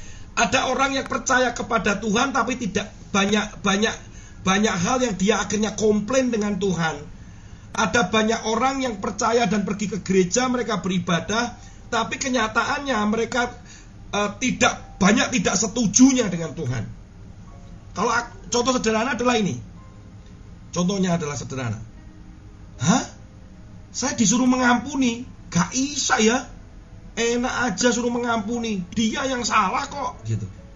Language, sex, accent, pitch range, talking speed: Indonesian, male, native, 160-225 Hz, 125 wpm